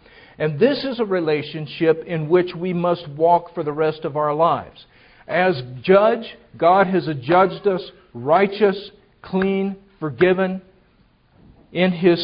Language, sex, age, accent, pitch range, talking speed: English, male, 50-69, American, 155-190 Hz, 130 wpm